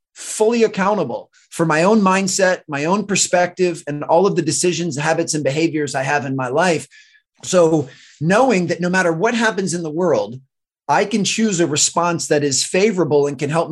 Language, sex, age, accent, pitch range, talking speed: English, male, 30-49, American, 145-180 Hz, 190 wpm